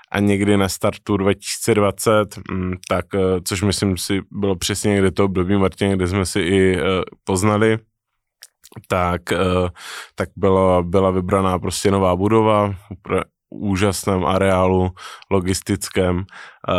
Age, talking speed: 20-39, 110 wpm